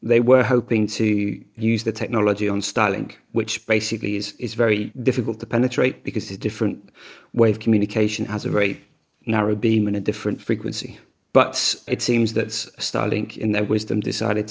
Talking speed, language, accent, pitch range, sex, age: 180 wpm, English, British, 105-115 Hz, male, 30-49